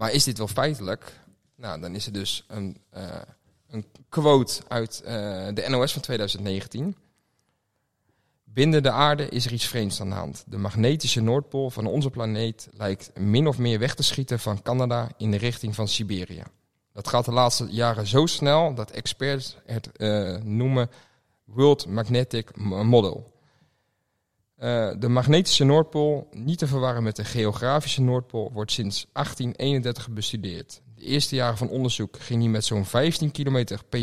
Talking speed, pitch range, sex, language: 160 wpm, 105-135 Hz, male, Dutch